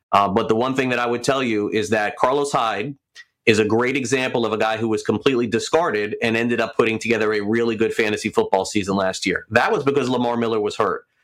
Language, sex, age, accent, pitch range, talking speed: English, male, 30-49, American, 110-145 Hz, 240 wpm